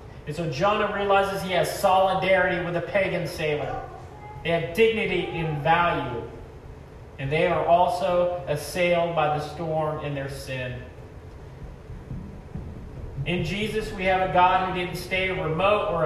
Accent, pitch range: American, 170-210 Hz